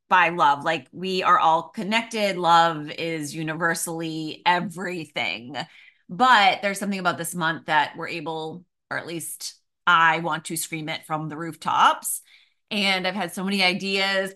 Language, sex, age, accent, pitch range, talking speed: English, female, 30-49, American, 165-195 Hz, 155 wpm